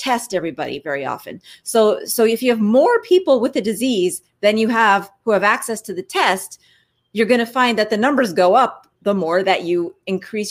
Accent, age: American, 30-49